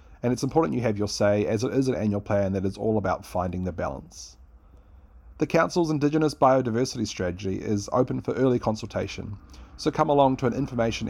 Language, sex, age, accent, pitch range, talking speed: English, male, 30-49, Australian, 90-120 Hz, 195 wpm